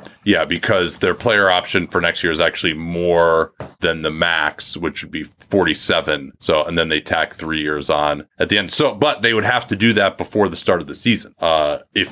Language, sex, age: English, male, 30-49